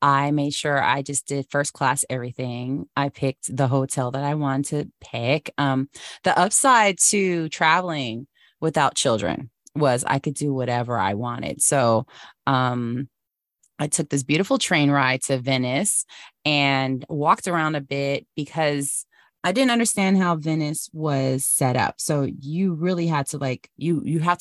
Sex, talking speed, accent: female, 160 wpm, American